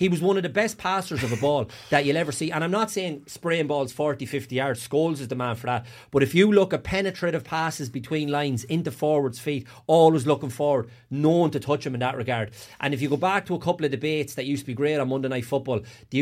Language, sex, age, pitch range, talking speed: English, male, 30-49, 125-155 Hz, 265 wpm